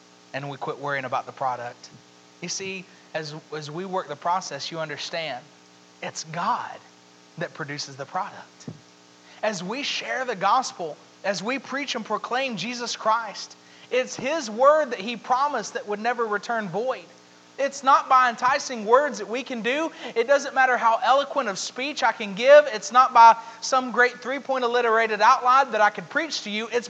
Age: 30-49